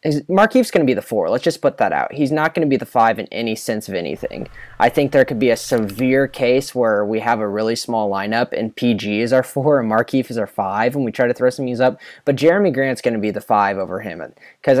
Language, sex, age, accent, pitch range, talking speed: English, male, 20-39, American, 115-155 Hz, 275 wpm